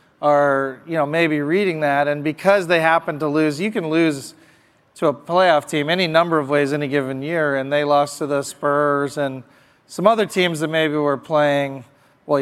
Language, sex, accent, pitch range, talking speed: English, male, American, 140-165 Hz, 200 wpm